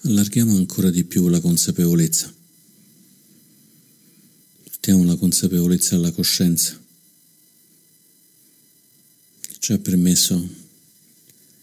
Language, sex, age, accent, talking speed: Italian, male, 50-69, native, 70 wpm